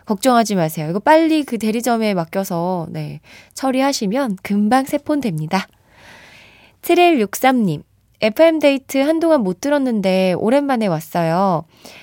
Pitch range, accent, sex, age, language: 180-265 Hz, native, female, 20-39, Korean